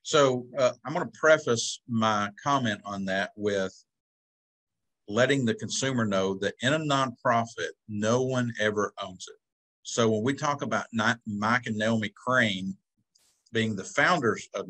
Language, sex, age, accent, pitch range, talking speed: English, male, 50-69, American, 105-130 Hz, 150 wpm